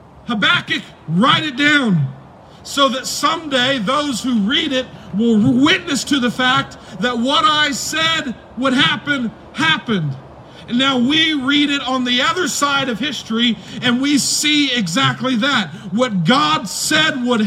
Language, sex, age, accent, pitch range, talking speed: English, male, 40-59, American, 215-270 Hz, 150 wpm